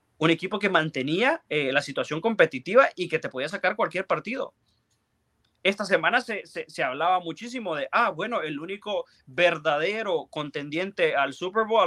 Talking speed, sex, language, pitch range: 165 wpm, male, Spanish, 145-230 Hz